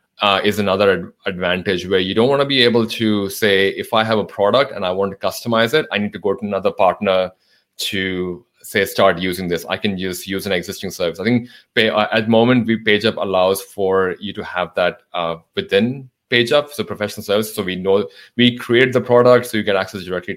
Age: 30-49